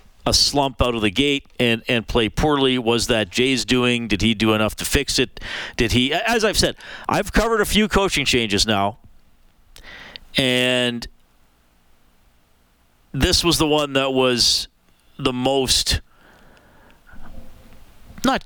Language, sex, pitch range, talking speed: English, male, 110-145 Hz, 140 wpm